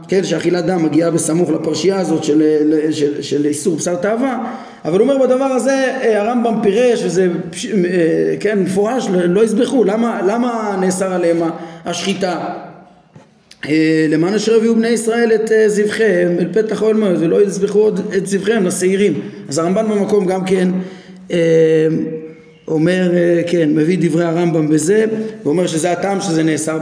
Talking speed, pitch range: 140 wpm, 160-205 Hz